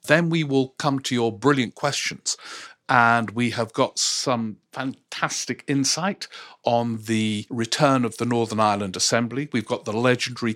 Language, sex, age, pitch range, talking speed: English, male, 50-69, 110-130 Hz, 155 wpm